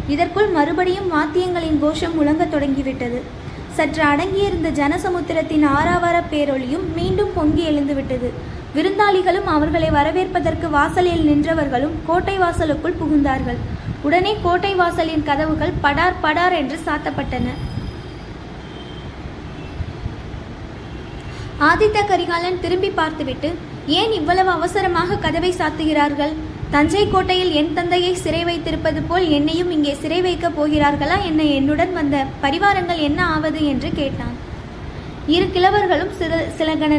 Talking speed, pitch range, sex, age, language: 100 wpm, 300-355 Hz, female, 20-39, Tamil